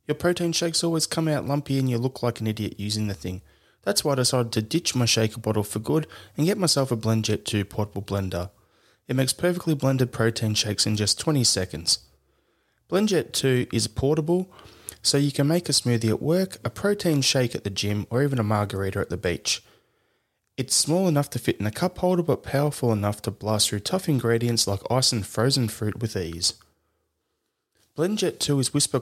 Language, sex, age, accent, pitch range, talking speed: English, male, 20-39, Australian, 105-145 Hz, 205 wpm